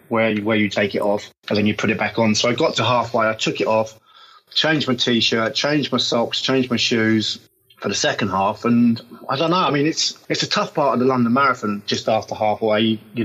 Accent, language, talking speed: British, English, 255 wpm